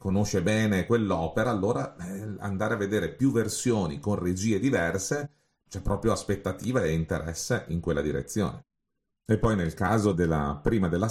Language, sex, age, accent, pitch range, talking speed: Italian, male, 40-59, native, 90-110 Hz, 145 wpm